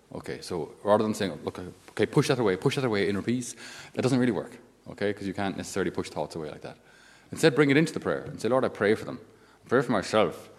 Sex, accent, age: male, Irish, 30-49